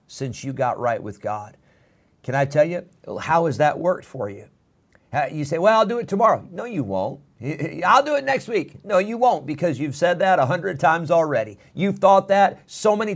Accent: American